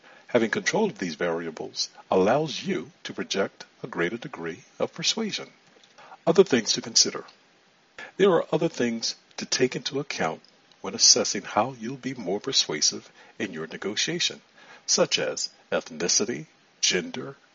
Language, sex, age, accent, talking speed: English, male, 50-69, American, 135 wpm